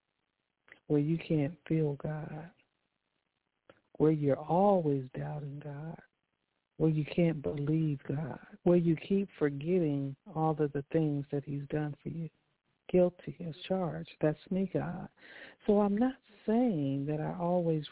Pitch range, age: 150-170 Hz, 60-79